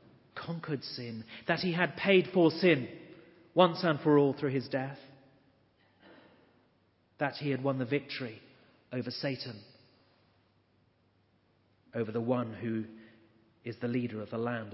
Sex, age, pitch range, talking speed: male, 30-49, 115-150 Hz, 135 wpm